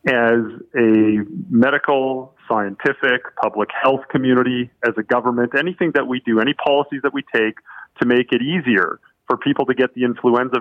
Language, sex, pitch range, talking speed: English, male, 110-135 Hz, 165 wpm